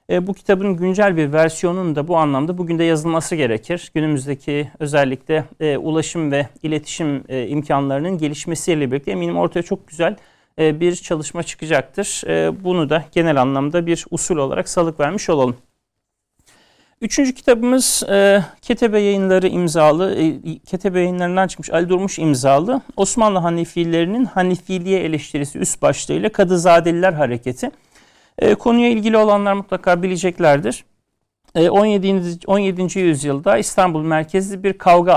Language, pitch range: Turkish, 155-190 Hz